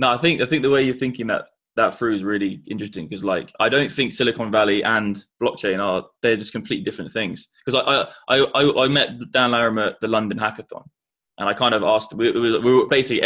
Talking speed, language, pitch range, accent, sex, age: 235 wpm, English, 110-135 Hz, British, male, 20-39